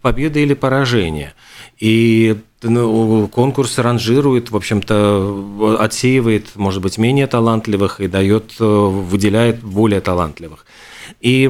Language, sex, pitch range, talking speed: Russian, male, 105-125 Hz, 100 wpm